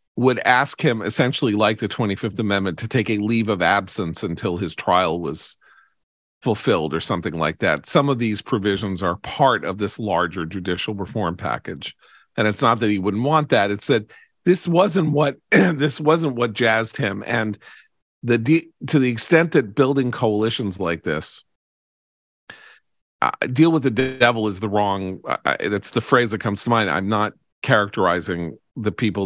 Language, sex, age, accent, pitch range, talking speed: English, male, 40-59, American, 90-120 Hz, 175 wpm